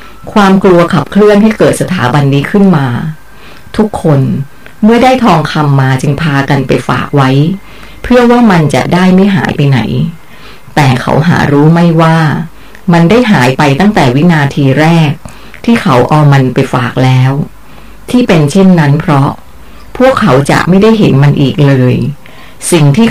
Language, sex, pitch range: Thai, female, 140-190 Hz